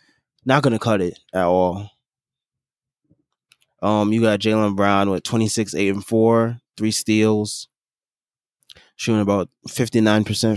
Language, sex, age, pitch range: English, male, 20-39, 100-125 Hz